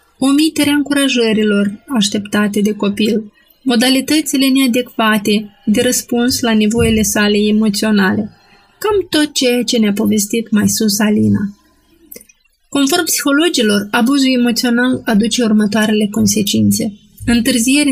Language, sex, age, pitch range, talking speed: Romanian, female, 20-39, 210-250 Hz, 100 wpm